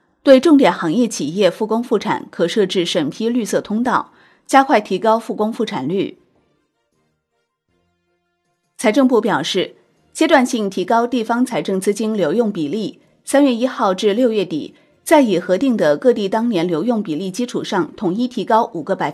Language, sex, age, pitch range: Chinese, female, 30-49, 185-245 Hz